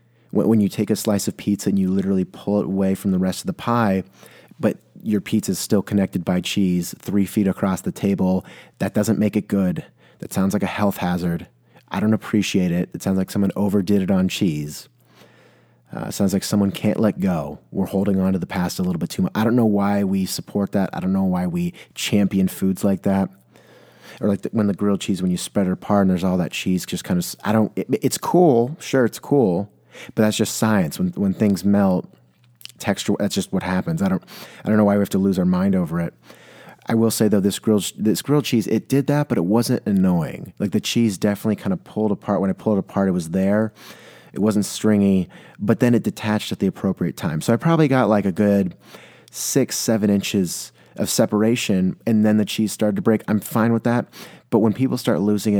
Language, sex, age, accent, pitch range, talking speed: English, male, 30-49, American, 95-110 Hz, 230 wpm